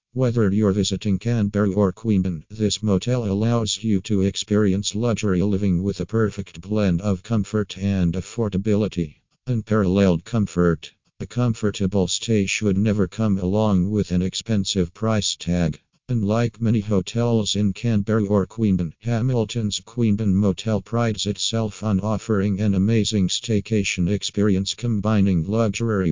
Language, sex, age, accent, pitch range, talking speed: English, male, 50-69, American, 95-110 Hz, 130 wpm